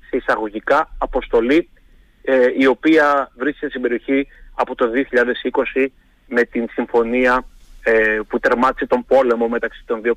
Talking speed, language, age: 130 wpm, Greek, 30-49